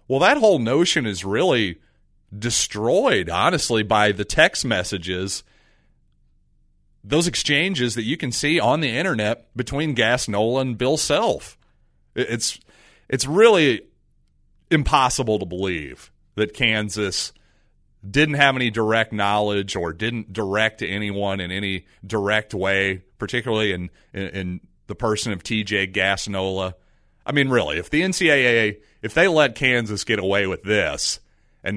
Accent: American